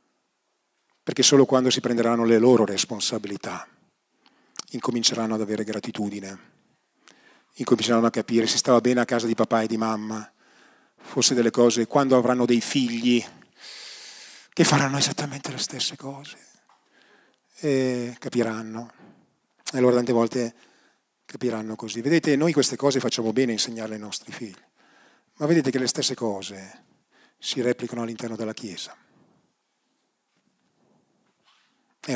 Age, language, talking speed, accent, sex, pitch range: 40-59, Italian, 130 wpm, native, male, 115-135 Hz